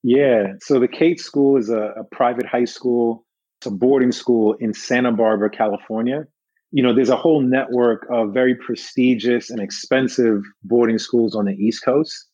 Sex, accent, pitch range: male, American, 115-130 Hz